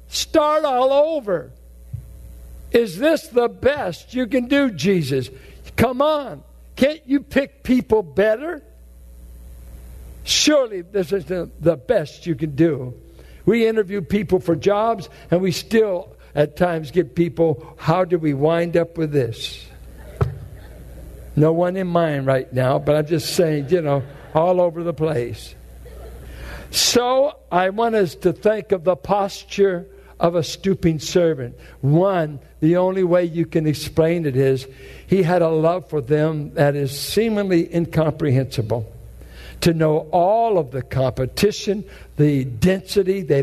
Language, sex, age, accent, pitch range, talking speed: English, male, 60-79, American, 130-190 Hz, 140 wpm